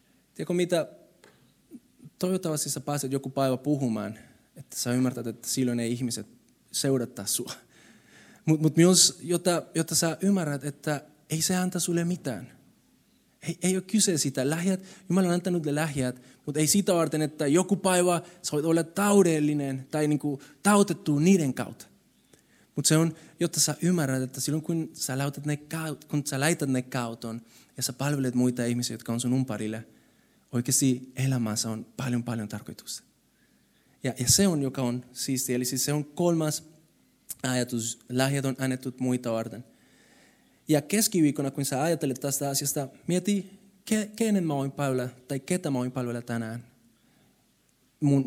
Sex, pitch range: male, 125-160 Hz